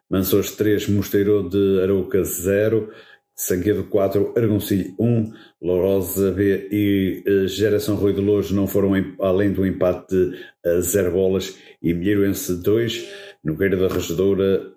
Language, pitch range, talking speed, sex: Portuguese, 95-105 Hz, 130 wpm, male